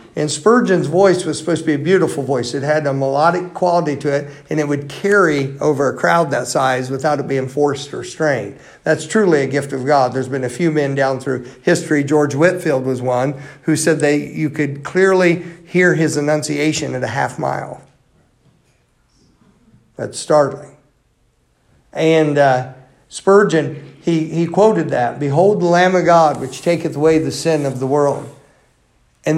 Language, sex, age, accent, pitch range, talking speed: English, male, 50-69, American, 135-170 Hz, 175 wpm